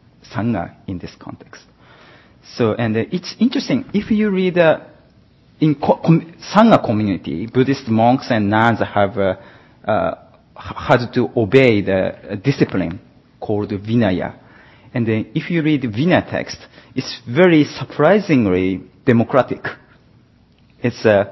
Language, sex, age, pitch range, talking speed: English, male, 40-59, 110-150 Hz, 125 wpm